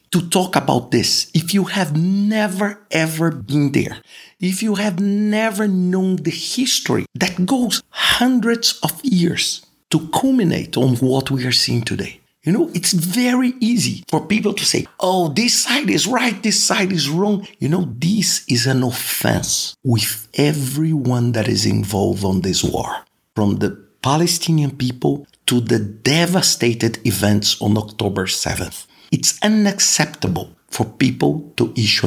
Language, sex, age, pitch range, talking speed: English, male, 50-69, 110-180 Hz, 150 wpm